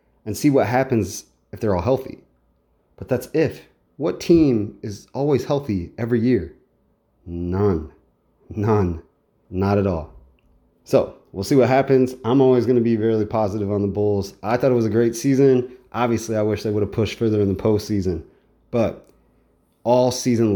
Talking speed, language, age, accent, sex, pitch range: 175 wpm, English, 30-49, American, male, 100-125 Hz